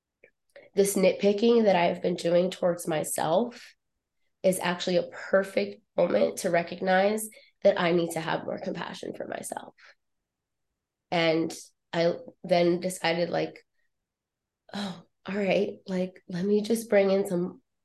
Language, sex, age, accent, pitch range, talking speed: English, female, 20-39, American, 170-190 Hz, 130 wpm